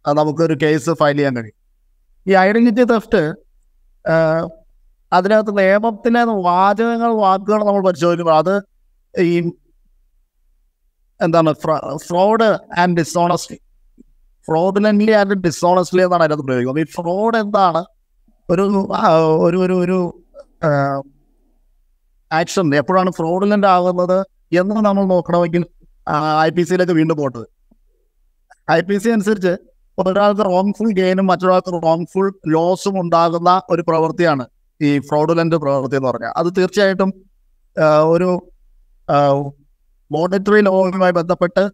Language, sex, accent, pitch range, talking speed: Malayalam, male, native, 155-195 Hz, 95 wpm